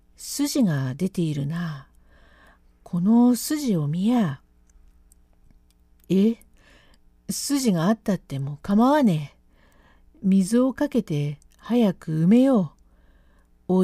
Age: 50-69